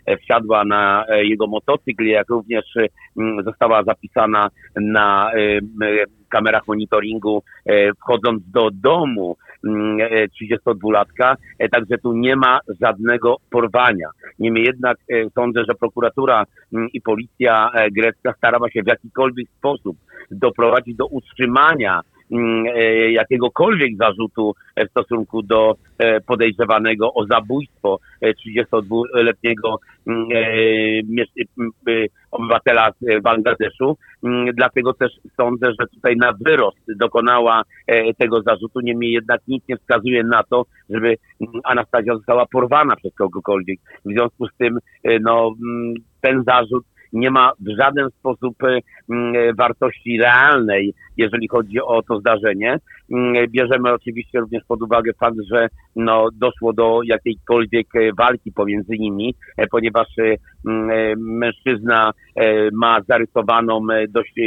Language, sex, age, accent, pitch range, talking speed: Polish, male, 50-69, native, 110-120 Hz, 100 wpm